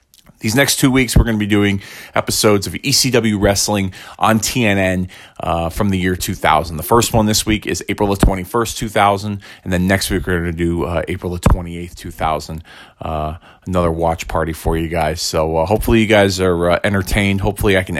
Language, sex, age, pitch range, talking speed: English, male, 30-49, 90-110 Hz, 205 wpm